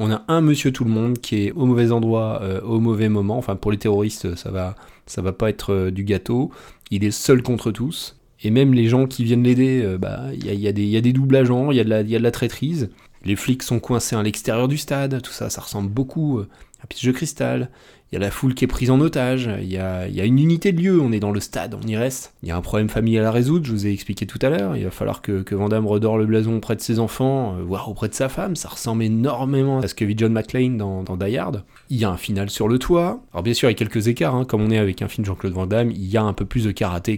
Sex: male